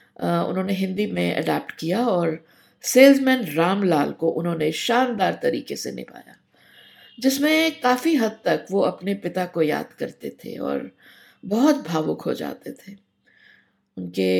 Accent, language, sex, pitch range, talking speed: native, Hindi, female, 150-225 Hz, 135 wpm